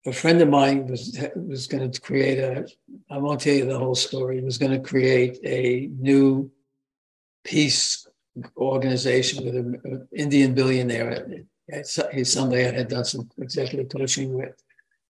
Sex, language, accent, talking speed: male, English, American, 155 wpm